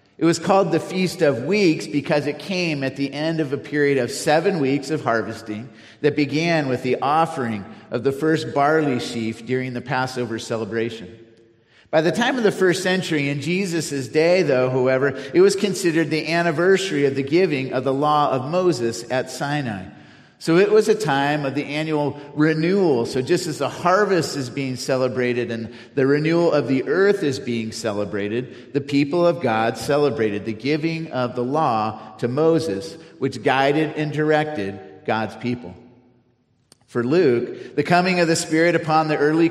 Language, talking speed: English, 175 wpm